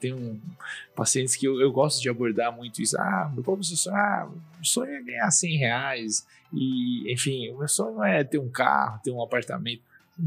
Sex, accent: male, Brazilian